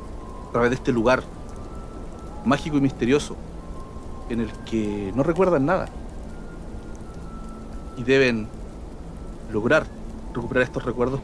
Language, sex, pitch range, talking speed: Spanish, male, 80-135 Hz, 105 wpm